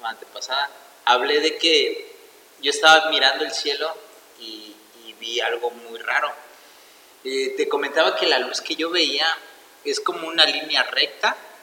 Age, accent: 30-49, Mexican